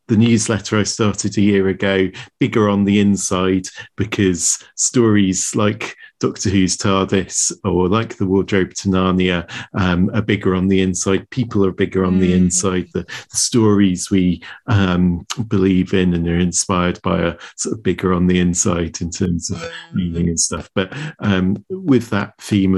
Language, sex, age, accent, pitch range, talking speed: English, male, 40-59, British, 95-105 Hz, 165 wpm